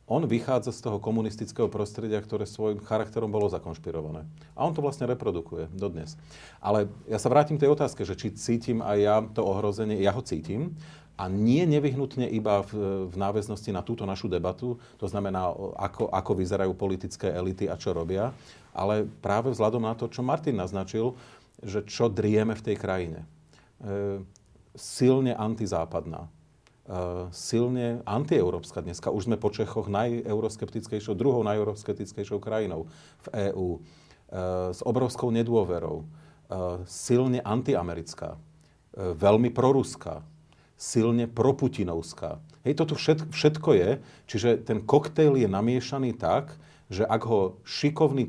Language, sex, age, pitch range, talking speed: Slovak, male, 40-59, 100-125 Hz, 140 wpm